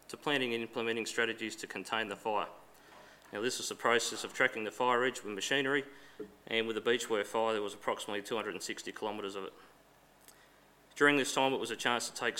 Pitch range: 105-130 Hz